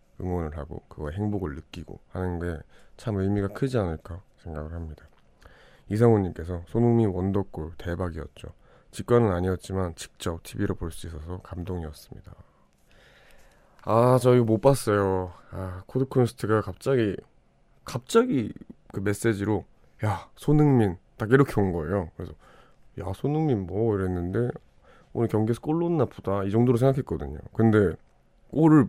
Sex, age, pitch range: male, 20-39, 90-115 Hz